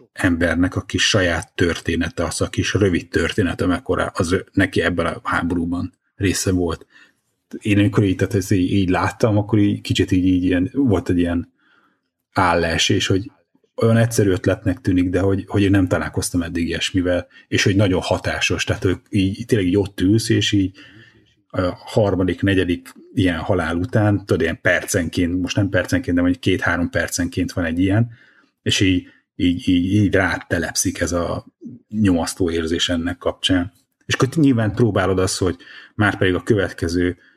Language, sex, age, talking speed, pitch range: Hungarian, male, 30-49, 160 wpm, 90-110 Hz